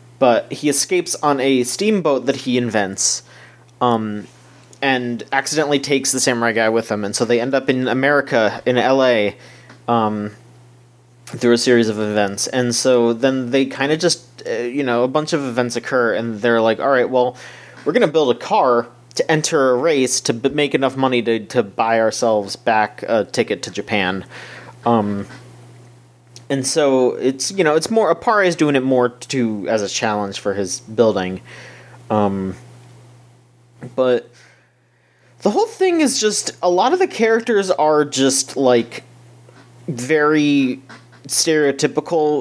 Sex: male